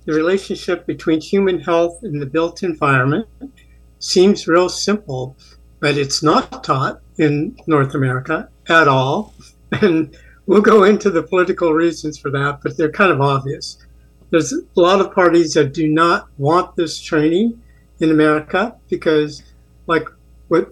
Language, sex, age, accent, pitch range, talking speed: English, male, 60-79, American, 140-175 Hz, 150 wpm